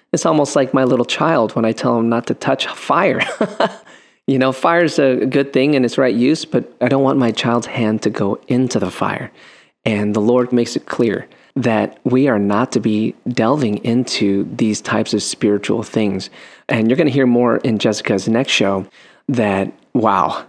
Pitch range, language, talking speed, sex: 110-135 Hz, English, 195 wpm, male